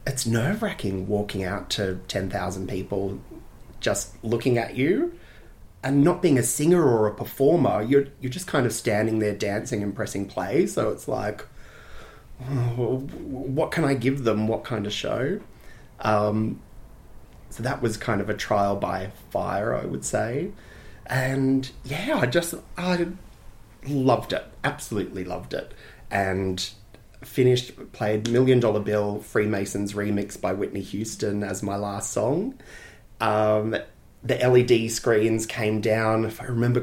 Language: English